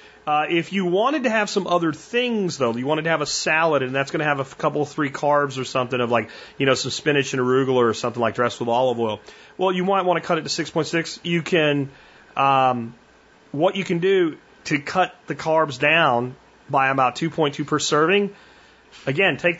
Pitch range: 130-175 Hz